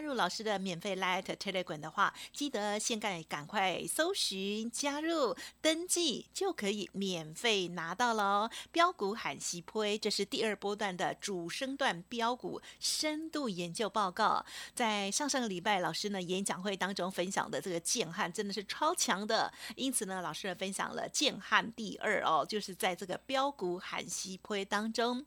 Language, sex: Chinese, female